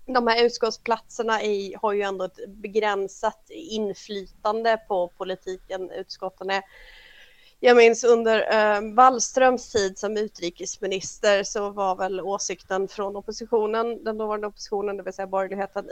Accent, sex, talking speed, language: native, female, 120 wpm, Swedish